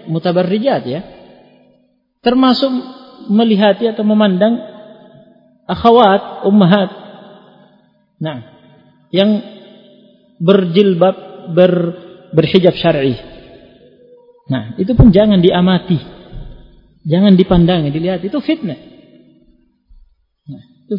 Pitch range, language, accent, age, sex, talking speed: 150-210 Hz, Indonesian, native, 40-59, male, 70 wpm